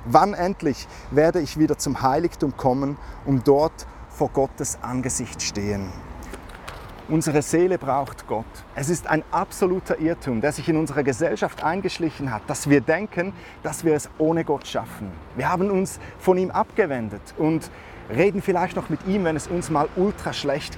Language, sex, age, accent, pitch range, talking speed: German, male, 30-49, German, 135-180 Hz, 165 wpm